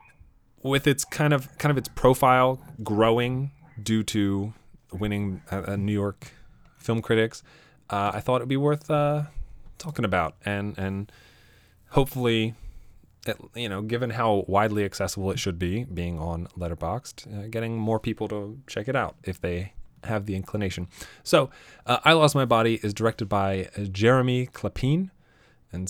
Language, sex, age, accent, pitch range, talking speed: English, male, 20-39, American, 100-130 Hz, 155 wpm